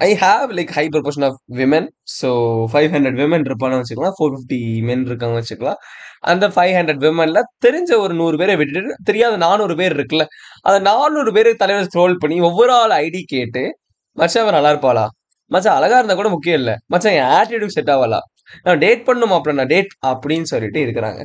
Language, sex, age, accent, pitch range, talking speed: Tamil, male, 20-39, native, 135-200 Hz, 180 wpm